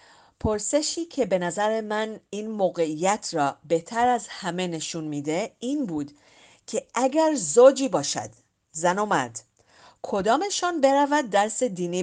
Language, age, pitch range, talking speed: Persian, 40-59, 155-215 Hz, 130 wpm